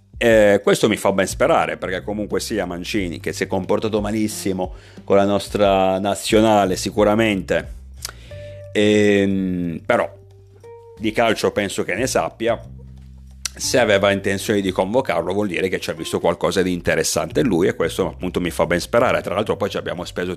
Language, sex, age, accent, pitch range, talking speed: Italian, male, 40-59, native, 90-105 Hz, 170 wpm